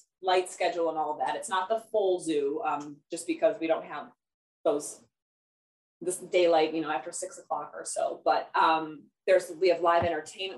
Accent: American